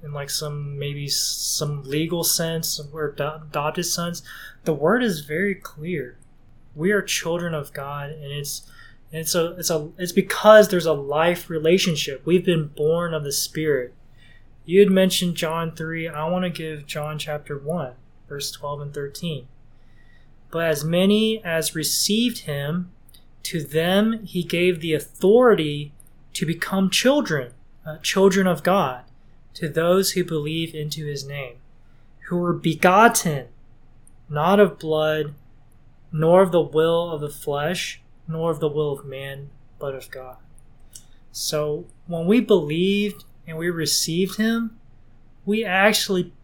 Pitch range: 140-175 Hz